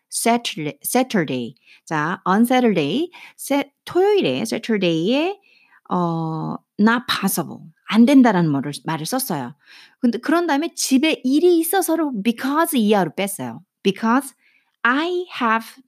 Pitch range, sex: 185-280 Hz, female